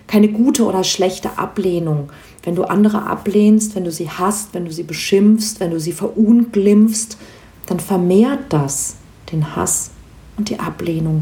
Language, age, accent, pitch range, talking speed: German, 40-59, German, 175-215 Hz, 155 wpm